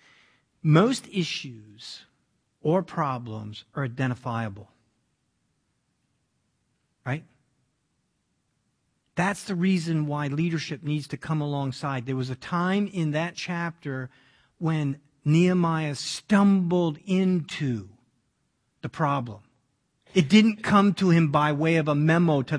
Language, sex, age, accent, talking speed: English, male, 50-69, American, 105 wpm